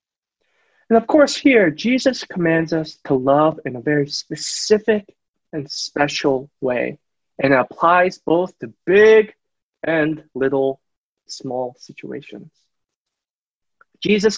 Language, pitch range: English, 135-180 Hz